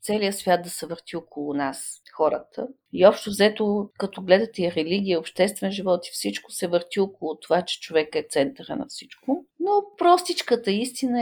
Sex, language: female, Bulgarian